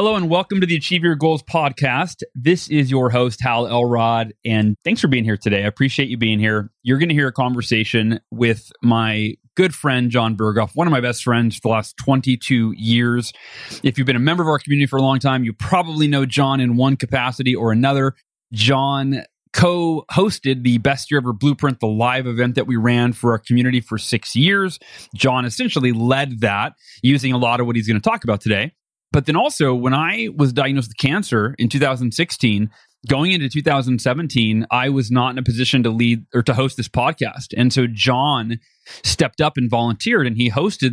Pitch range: 115-140 Hz